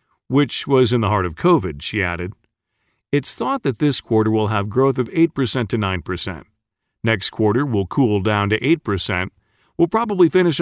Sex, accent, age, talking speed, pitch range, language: male, American, 40-59, 175 wpm, 100-140 Hz, English